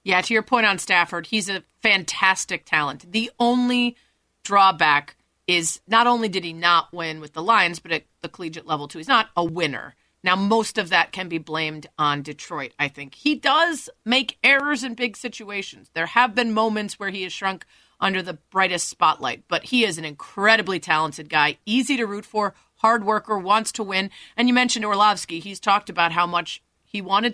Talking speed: 200 wpm